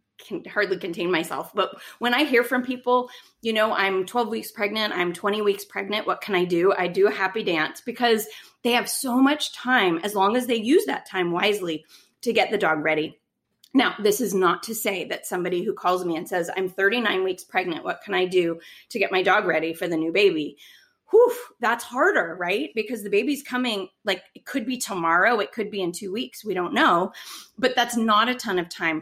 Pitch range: 180-240 Hz